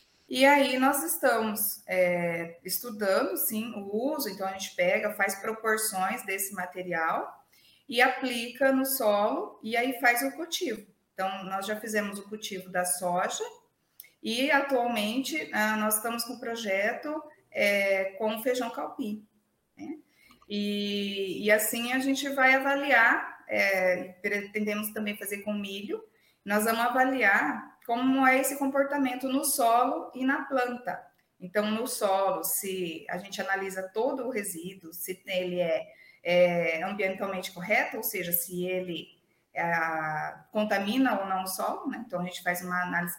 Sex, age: female, 20-39